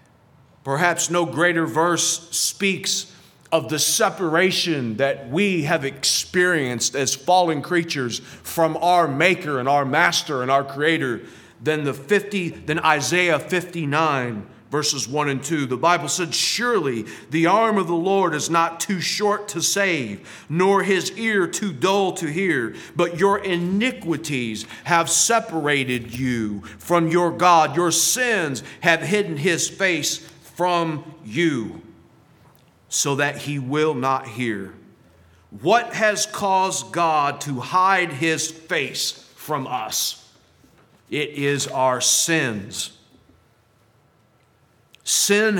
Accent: American